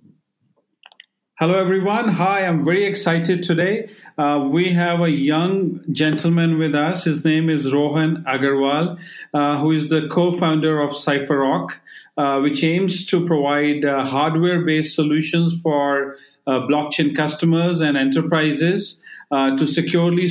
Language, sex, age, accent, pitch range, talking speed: English, male, 40-59, Indian, 145-170 Hz, 135 wpm